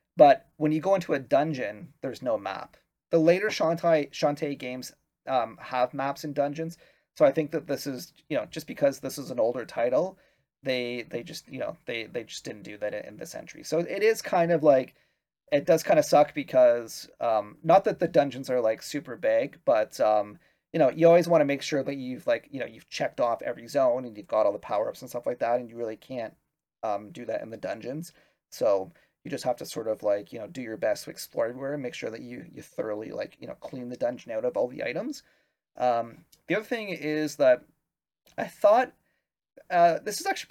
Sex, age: male, 30-49